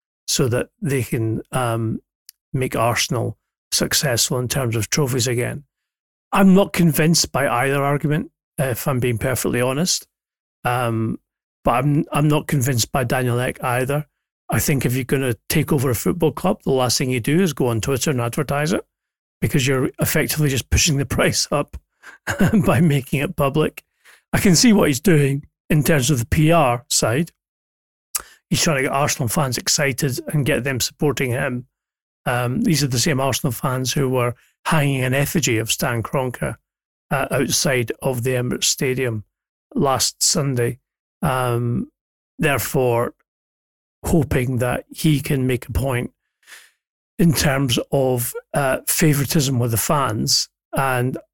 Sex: male